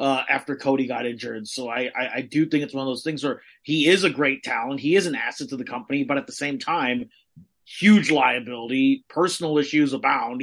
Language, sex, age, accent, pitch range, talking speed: English, male, 30-49, American, 135-165 Hz, 225 wpm